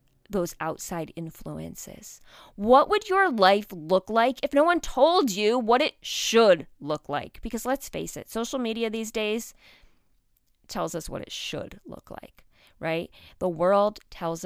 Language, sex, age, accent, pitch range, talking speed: English, female, 30-49, American, 185-250 Hz, 160 wpm